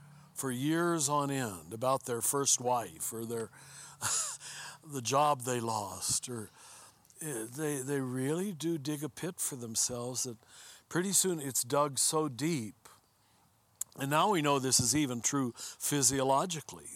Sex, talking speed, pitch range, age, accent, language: male, 140 wpm, 125-155 Hz, 60-79, American, English